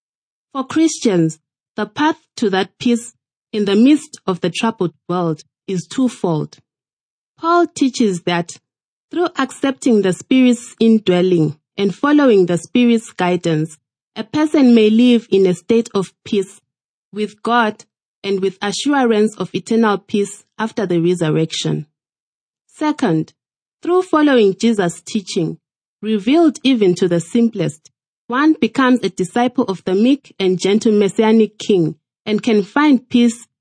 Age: 30-49